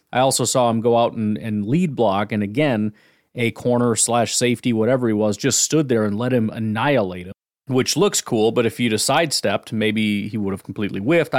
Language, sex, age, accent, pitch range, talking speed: English, male, 30-49, American, 110-135 Hz, 215 wpm